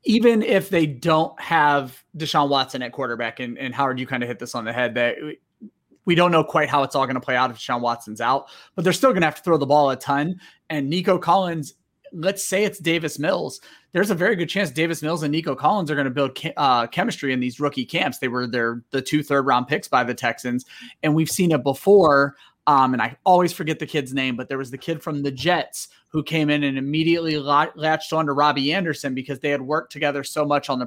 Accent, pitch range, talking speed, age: American, 135-165 Hz, 250 wpm, 30-49